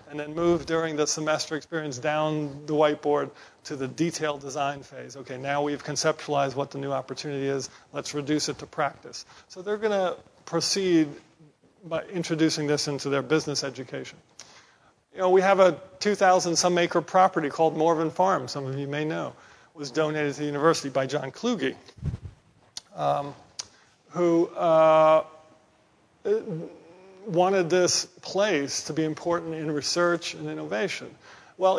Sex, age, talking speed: male, 40-59, 150 wpm